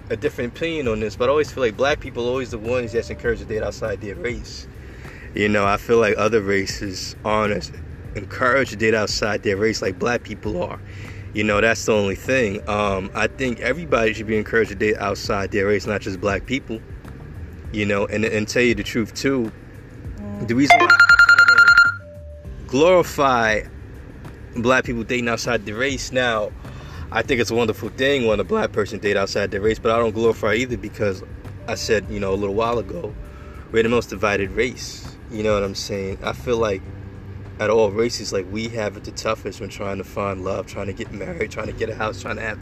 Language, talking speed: English, 215 wpm